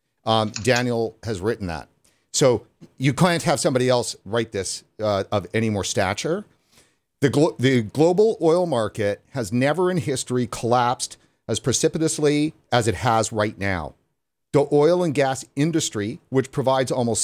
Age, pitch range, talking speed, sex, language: 40-59, 115-150 Hz, 150 wpm, male, English